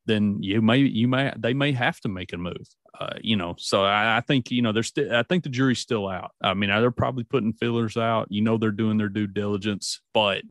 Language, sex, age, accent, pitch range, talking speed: English, male, 30-49, American, 95-115 Hz, 250 wpm